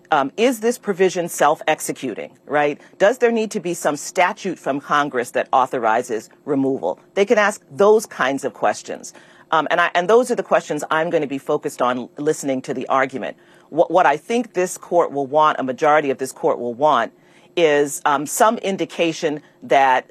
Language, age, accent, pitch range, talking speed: English, 40-59, American, 135-180 Hz, 185 wpm